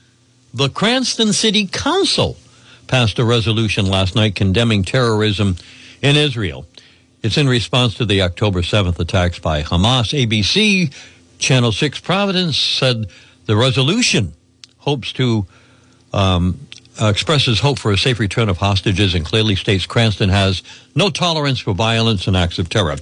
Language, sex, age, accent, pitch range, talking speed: English, male, 60-79, American, 100-135 Hz, 140 wpm